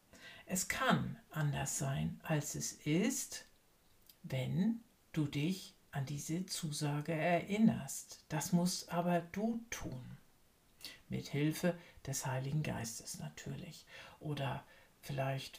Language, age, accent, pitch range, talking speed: German, 60-79, German, 155-185 Hz, 105 wpm